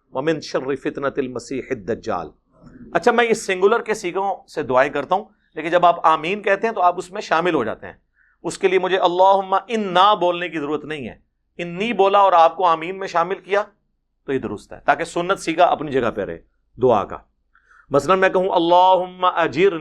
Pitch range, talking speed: 150-195 Hz, 195 wpm